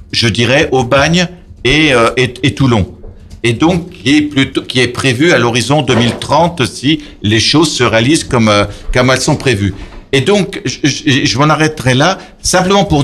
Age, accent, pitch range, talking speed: 60-79, French, 115-155 Hz, 185 wpm